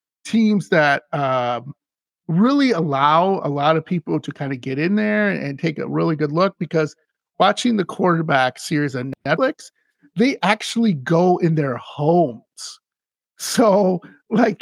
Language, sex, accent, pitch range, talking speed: English, male, American, 150-210 Hz, 150 wpm